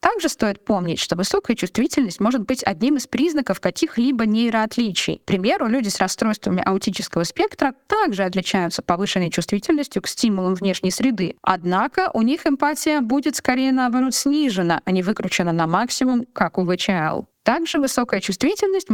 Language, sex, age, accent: Russian, female, 20-39, native